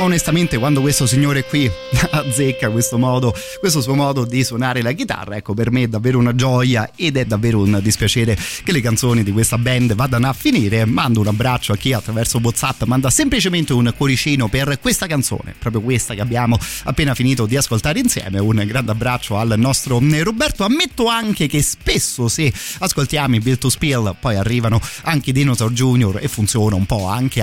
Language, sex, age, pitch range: Italian, male, 30-49, 115-145 Hz